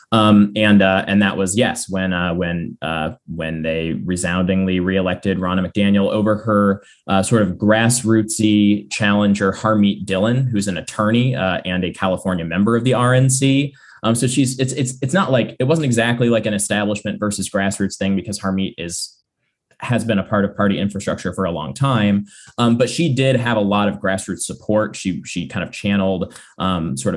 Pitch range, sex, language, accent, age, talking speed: 95-115 Hz, male, English, American, 20-39, 190 wpm